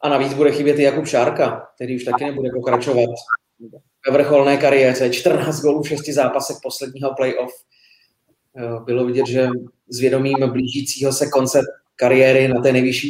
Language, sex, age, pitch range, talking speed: Czech, male, 30-49, 125-145 Hz, 145 wpm